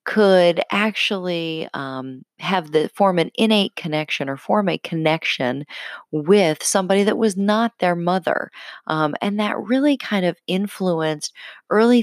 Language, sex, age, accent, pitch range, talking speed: English, female, 40-59, American, 160-225 Hz, 140 wpm